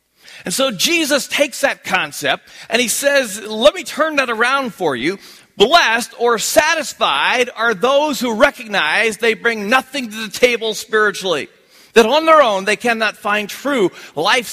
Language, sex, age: English, male, 40-59